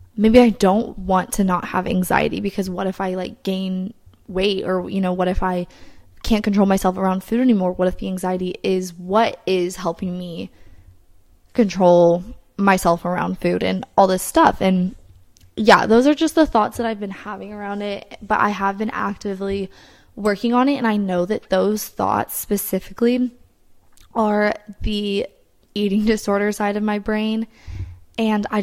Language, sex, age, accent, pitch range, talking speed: English, female, 20-39, American, 185-220 Hz, 170 wpm